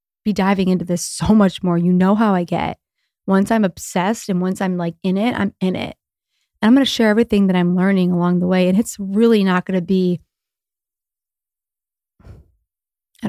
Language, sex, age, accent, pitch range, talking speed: English, female, 20-39, American, 185-235 Hz, 200 wpm